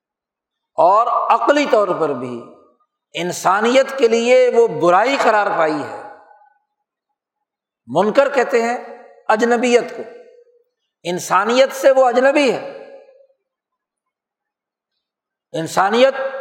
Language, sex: Urdu, male